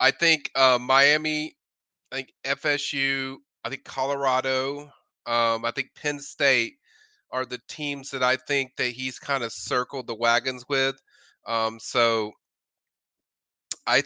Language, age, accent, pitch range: English, 30-49, American, 130-145 Hz